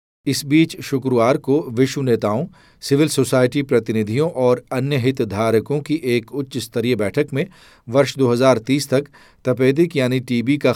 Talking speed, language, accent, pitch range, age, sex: 145 wpm, Hindi, native, 110-135 Hz, 40-59, male